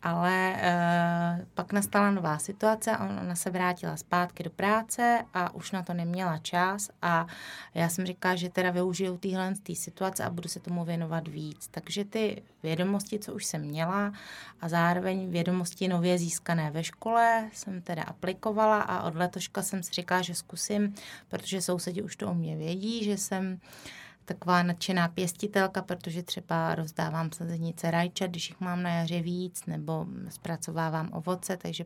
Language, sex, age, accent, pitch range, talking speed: Czech, female, 30-49, native, 170-190 Hz, 160 wpm